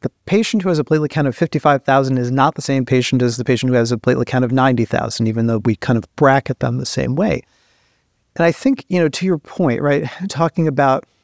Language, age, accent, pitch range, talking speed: English, 40-59, American, 120-145 Hz, 240 wpm